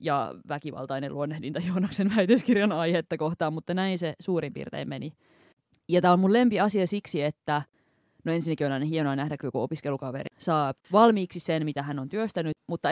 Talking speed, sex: 175 wpm, female